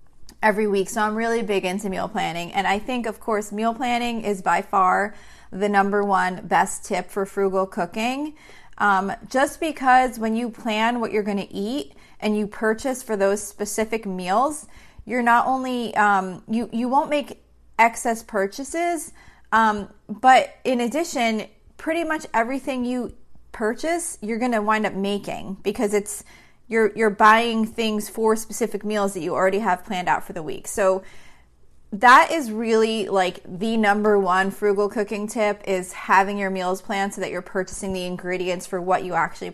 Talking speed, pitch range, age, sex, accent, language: 175 wpm, 190-230 Hz, 30-49, female, American, English